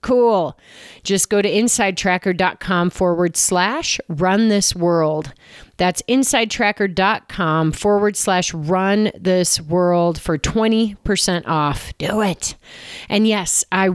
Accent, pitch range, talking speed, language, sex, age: American, 170-205 Hz, 110 wpm, English, female, 30-49